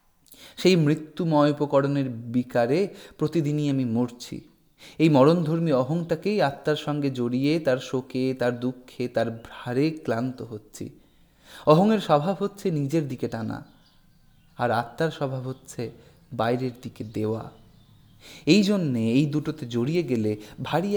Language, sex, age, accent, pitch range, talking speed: Hindi, male, 30-49, native, 120-155 Hz, 90 wpm